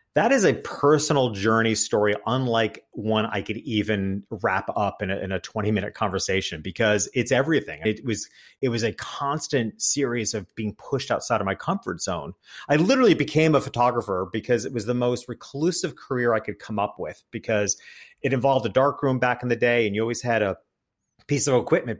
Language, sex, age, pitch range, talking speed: English, male, 40-59, 105-135 Hz, 190 wpm